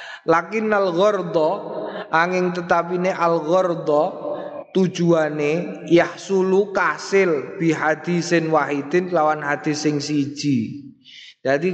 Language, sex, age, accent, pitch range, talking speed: Indonesian, male, 20-39, native, 140-170 Hz, 80 wpm